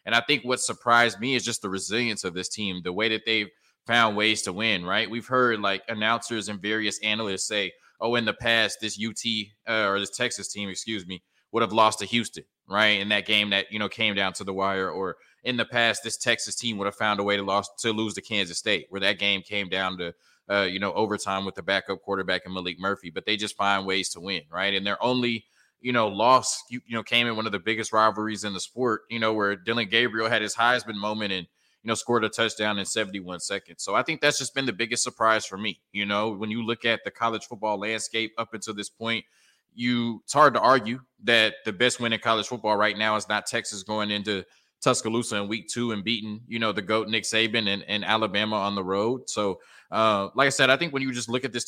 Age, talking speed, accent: 20-39, 250 wpm, American